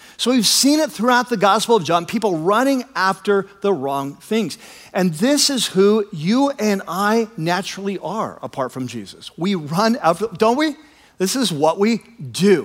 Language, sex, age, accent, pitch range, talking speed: English, male, 50-69, American, 135-205 Hz, 175 wpm